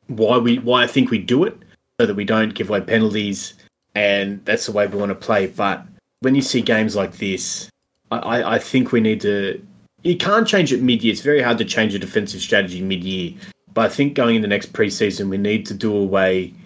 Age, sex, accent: 20-39, male, Australian